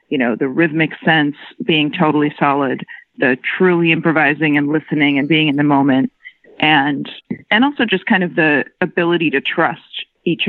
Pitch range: 145-175 Hz